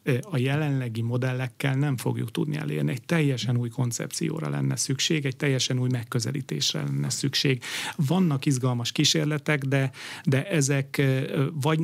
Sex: male